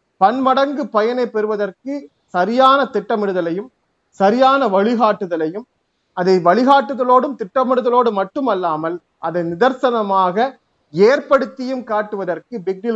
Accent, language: native, Tamil